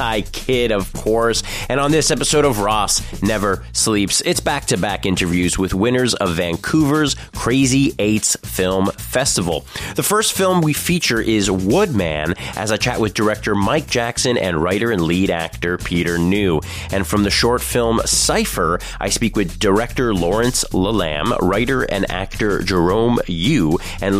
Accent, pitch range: American, 95-130 Hz